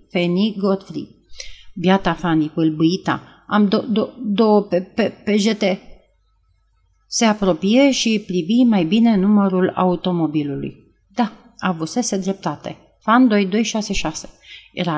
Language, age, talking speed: Romanian, 40-59, 120 wpm